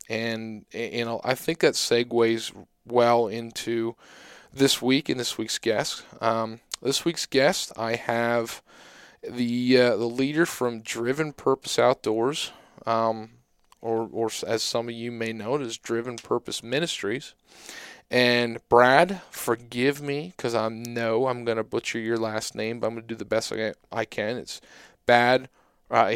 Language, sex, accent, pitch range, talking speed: English, male, American, 115-130 Hz, 160 wpm